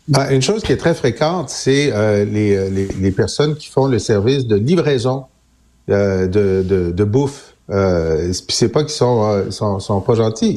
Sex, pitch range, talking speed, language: male, 105-155 Hz, 200 wpm, French